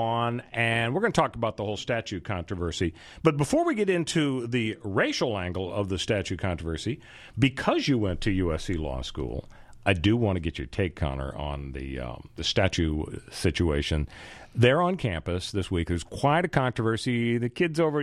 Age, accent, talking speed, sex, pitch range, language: 40-59, American, 185 wpm, male, 95-130 Hz, English